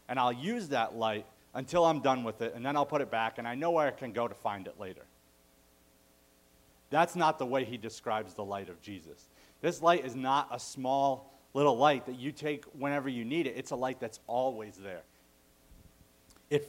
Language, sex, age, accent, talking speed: English, male, 40-59, American, 210 wpm